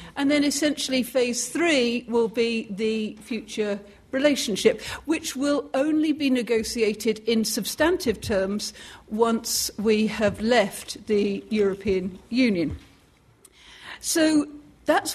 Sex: female